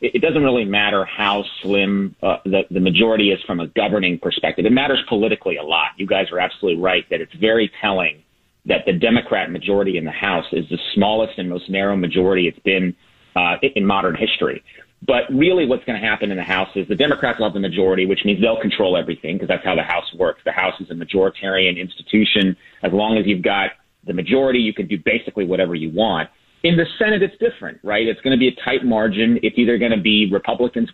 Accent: American